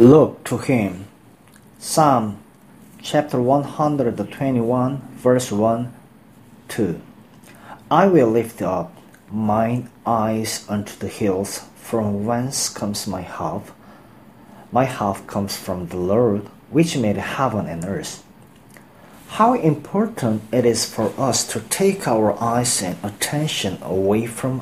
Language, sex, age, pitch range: Korean, male, 40-59, 105-125 Hz